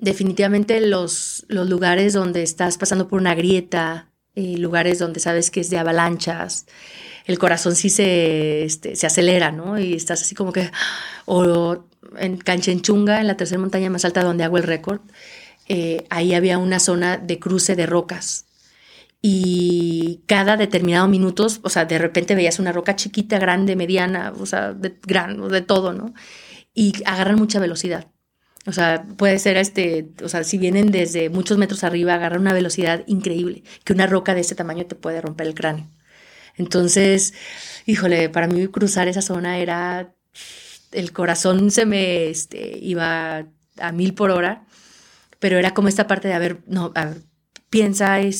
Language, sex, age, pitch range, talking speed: English, female, 30-49, 170-195 Hz, 165 wpm